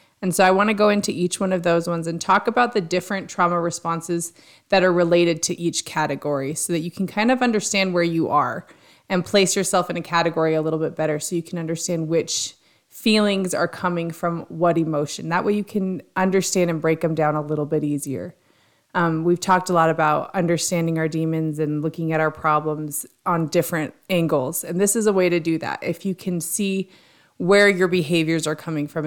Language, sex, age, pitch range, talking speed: English, female, 20-39, 155-185 Hz, 215 wpm